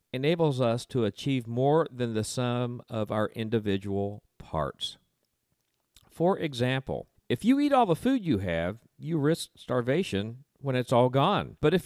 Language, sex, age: English, male, 50-69